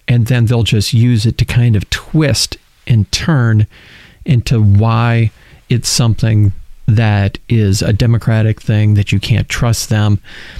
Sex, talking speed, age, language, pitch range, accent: male, 145 wpm, 40-59, English, 105-140 Hz, American